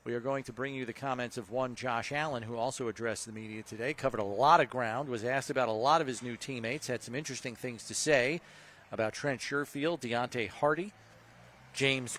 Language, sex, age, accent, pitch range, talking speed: English, male, 40-59, American, 120-145 Hz, 215 wpm